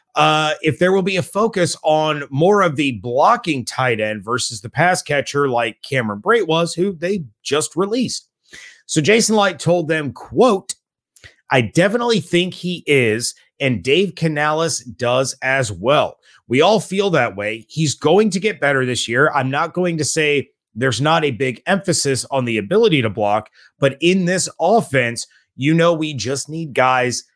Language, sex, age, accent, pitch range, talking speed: English, male, 30-49, American, 130-175 Hz, 175 wpm